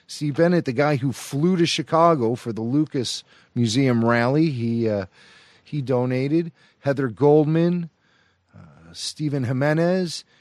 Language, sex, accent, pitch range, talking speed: English, male, American, 105-150 Hz, 125 wpm